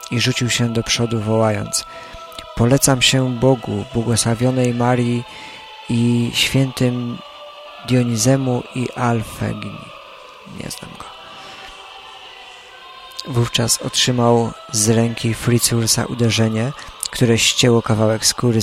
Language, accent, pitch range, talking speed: Polish, native, 110-125 Hz, 95 wpm